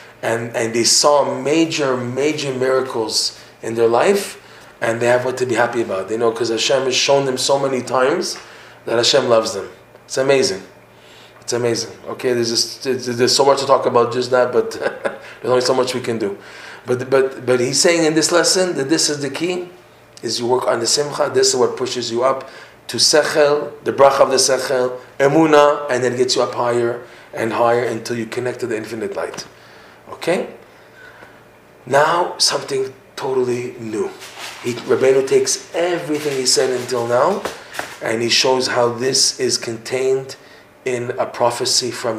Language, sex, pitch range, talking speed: English, male, 120-145 Hz, 180 wpm